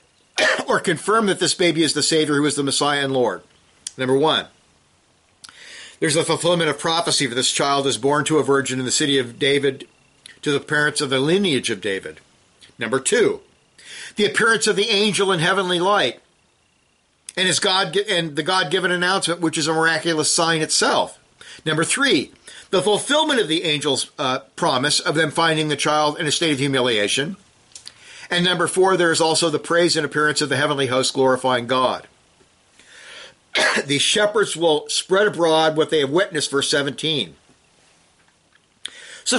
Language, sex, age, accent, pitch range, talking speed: English, male, 50-69, American, 135-180 Hz, 170 wpm